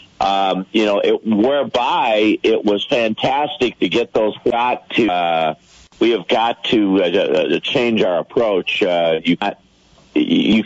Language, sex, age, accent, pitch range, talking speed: English, male, 50-69, American, 85-100 Hz, 150 wpm